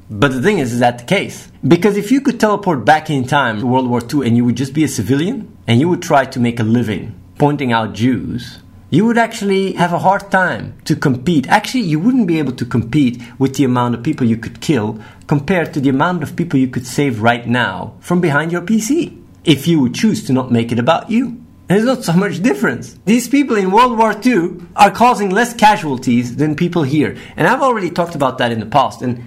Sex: male